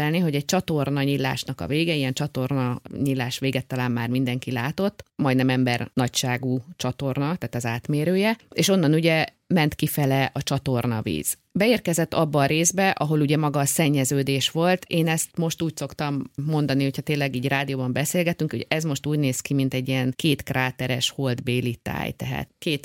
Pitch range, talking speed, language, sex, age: 125-155 Hz, 170 wpm, Hungarian, female, 30-49